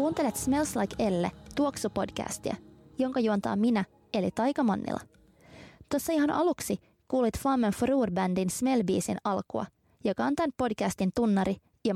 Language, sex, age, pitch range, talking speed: Finnish, female, 20-39, 180-250 Hz, 140 wpm